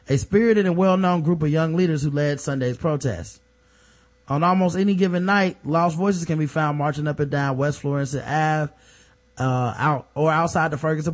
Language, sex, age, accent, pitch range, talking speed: English, male, 20-39, American, 135-175 Hz, 190 wpm